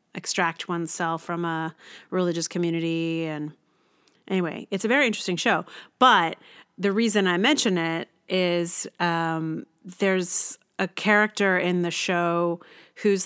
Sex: female